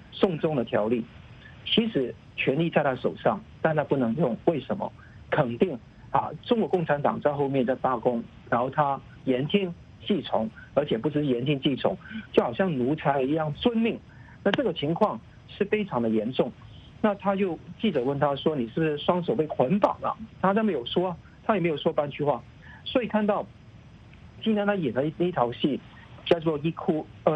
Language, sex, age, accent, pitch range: English, male, 50-69, Chinese, 135-190 Hz